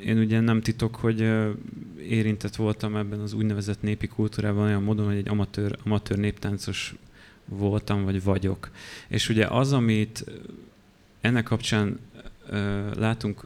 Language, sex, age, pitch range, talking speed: Hungarian, male, 30-49, 100-110 Hz, 135 wpm